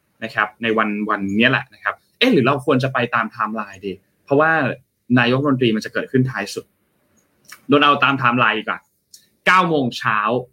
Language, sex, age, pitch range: Thai, male, 20-39, 115-150 Hz